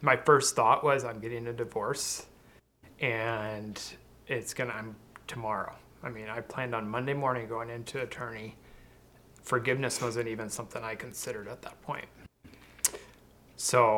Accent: American